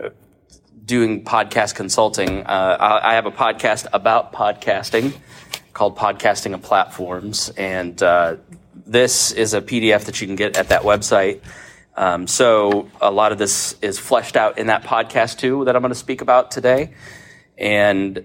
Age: 30-49